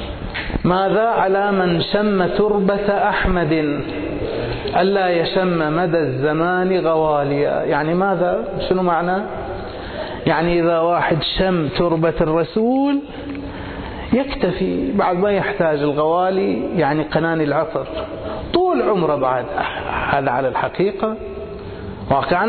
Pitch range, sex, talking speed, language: 155-205 Hz, male, 95 wpm, Arabic